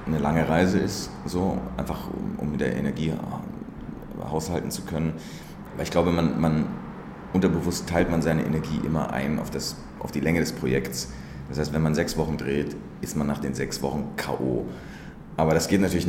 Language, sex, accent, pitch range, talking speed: German, male, German, 65-80 Hz, 190 wpm